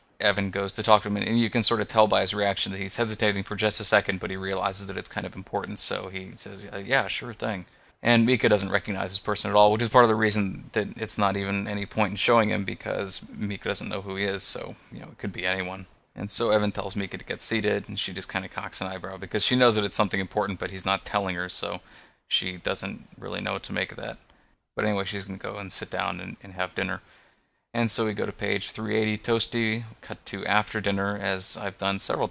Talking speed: 260 wpm